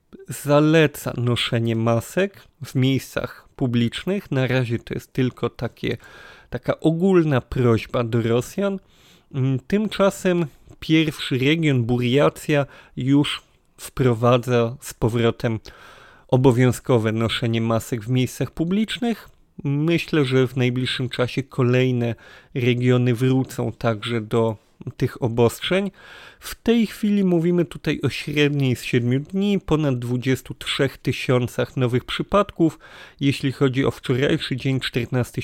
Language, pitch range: Polish, 120-155 Hz